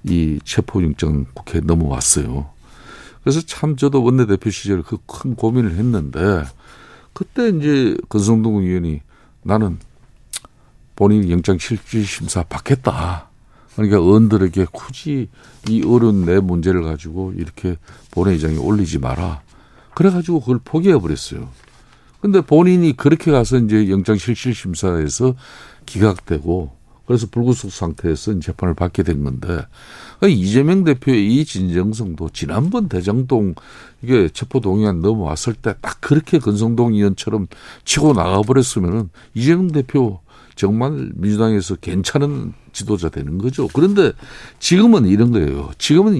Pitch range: 90-125 Hz